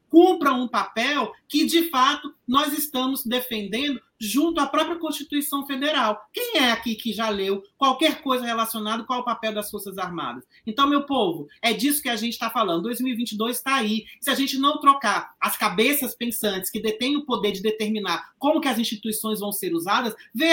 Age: 40-59